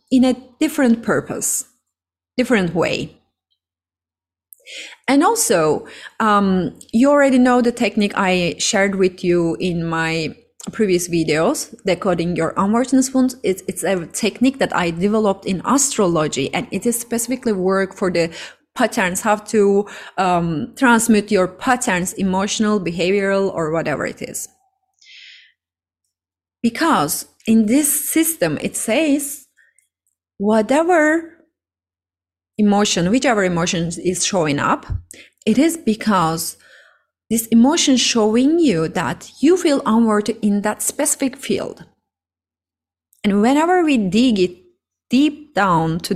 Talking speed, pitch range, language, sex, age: 120 wpm, 175-255 Hz, English, female, 30-49